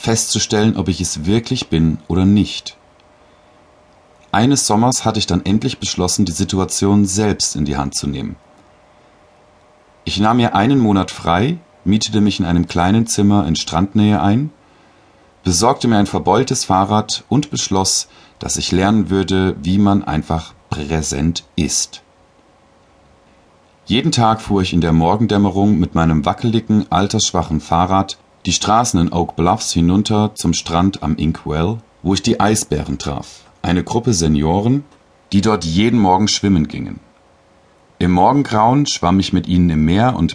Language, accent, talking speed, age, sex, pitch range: German, German, 145 wpm, 40-59, male, 85-105 Hz